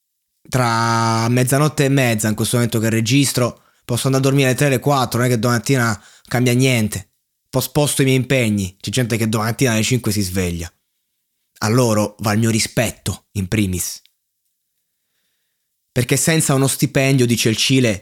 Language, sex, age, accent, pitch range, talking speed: Italian, male, 20-39, native, 110-135 Hz, 165 wpm